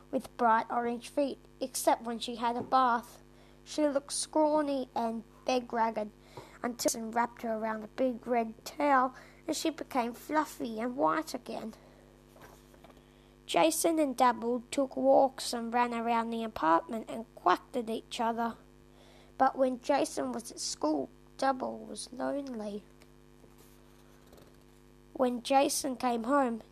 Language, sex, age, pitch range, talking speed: English, female, 20-39, 225-280 Hz, 130 wpm